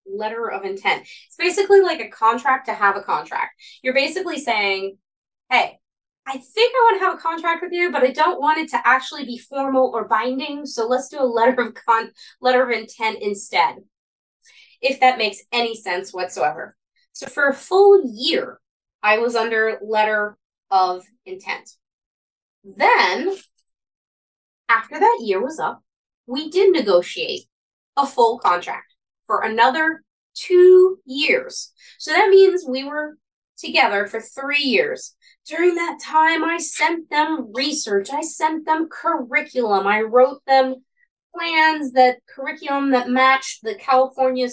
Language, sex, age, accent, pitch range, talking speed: English, female, 20-39, American, 235-315 Hz, 150 wpm